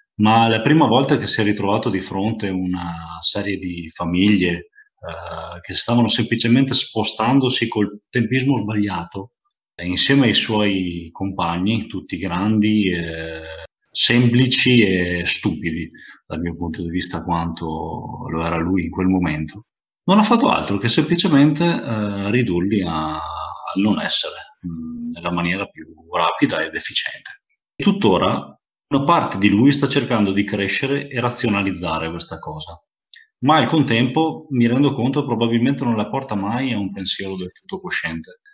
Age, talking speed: 40-59, 150 wpm